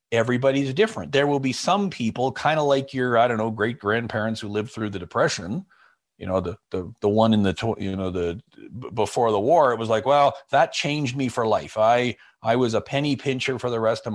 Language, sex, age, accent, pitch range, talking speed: English, male, 40-59, American, 120-155 Hz, 230 wpm